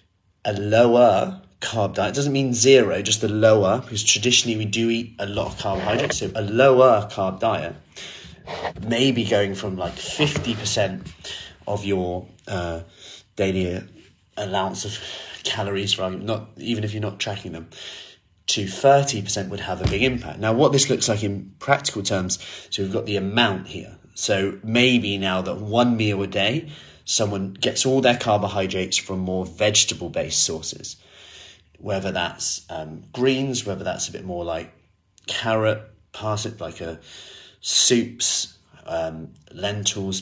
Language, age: English, 30-49